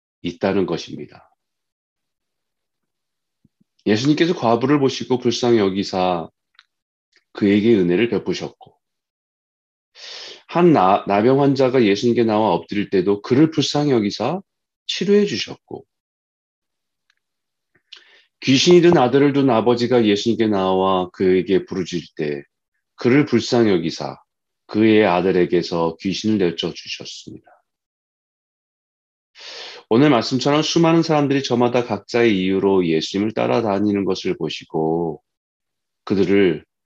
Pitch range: 95-135 Hz